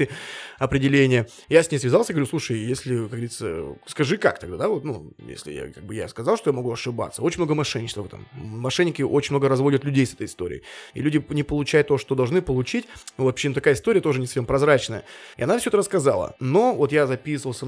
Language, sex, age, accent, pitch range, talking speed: Russian, male, 20-39, native, 130-160 Hz, 215 wpm